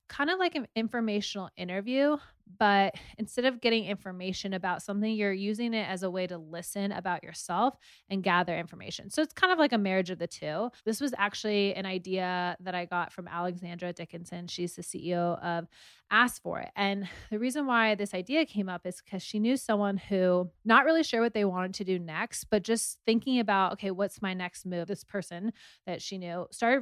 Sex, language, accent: female, English, American